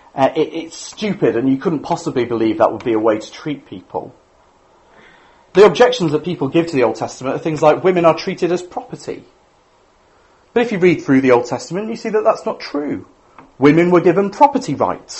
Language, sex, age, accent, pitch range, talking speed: English, male, 40-59, British, 130-200 Hz, 205 wpm